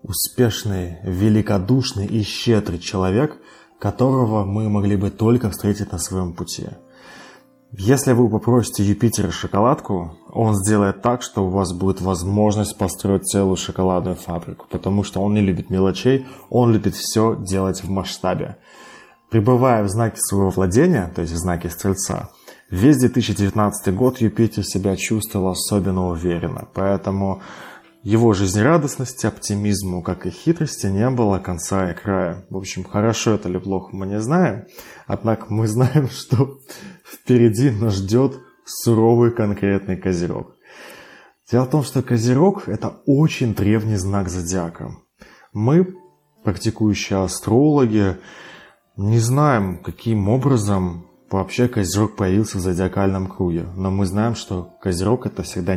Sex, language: male, Russian